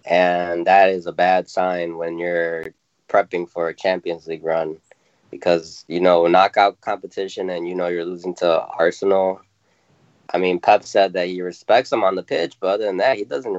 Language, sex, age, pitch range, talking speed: English, male, 20-39, 85-100 Hz, 190 wpm